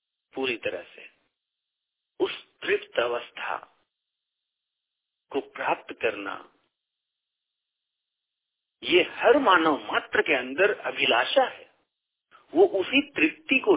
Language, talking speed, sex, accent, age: Hindi, 90 wpm, male, native, 50-69